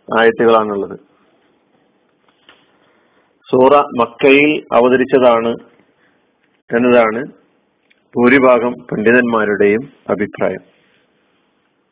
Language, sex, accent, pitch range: Malayalam, male, native, 130-155 Hz